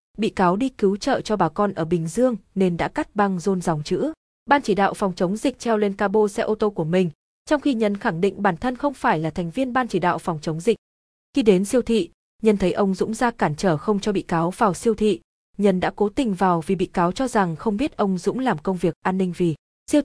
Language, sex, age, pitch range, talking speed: Vietnamese, female, 20-39, 180-225 Hz, 265 wpm